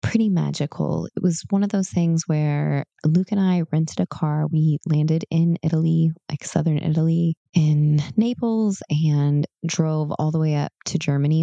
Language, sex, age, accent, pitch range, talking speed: English, female, 20-39, American, 150-175 Hz, 170 wpm